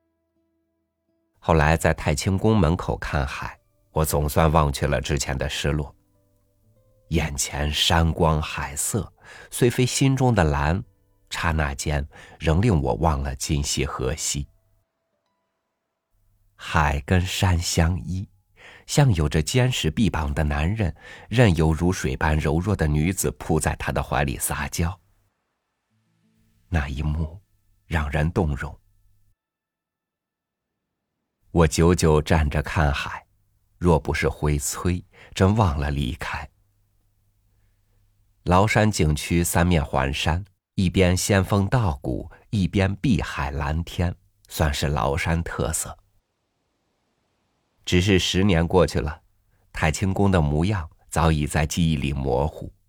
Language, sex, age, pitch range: Chinese, male, 50-69, 75-100 Hz